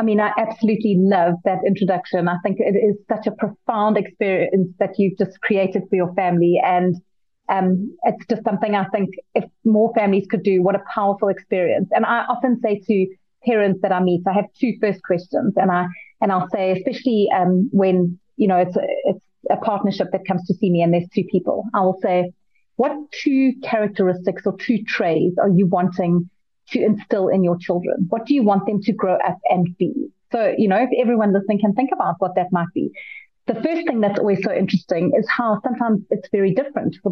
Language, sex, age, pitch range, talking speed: English, female, 30-49, 185-220 Hz, 210 wpm